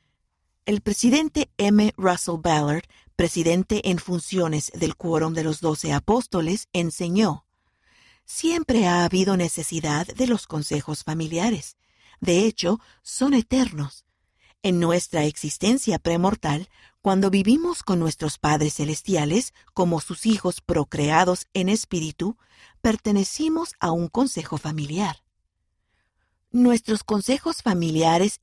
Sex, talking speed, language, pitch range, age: female, 110 wpm, Spanish, 160-220 Hz, 50-69